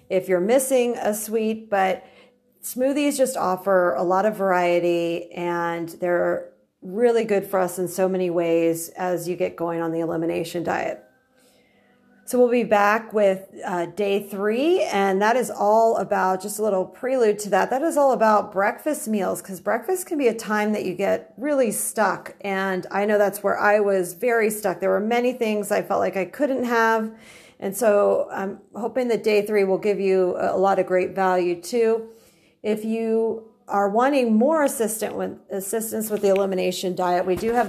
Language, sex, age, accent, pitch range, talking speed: English, female, 40-59, American, 185-225 Hz, 185 wpm